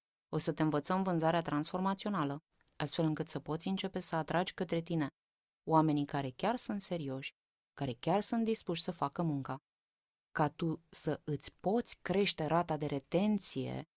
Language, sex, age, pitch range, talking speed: Romanian, female, 20-39, 150-190 Hz, 155 wpm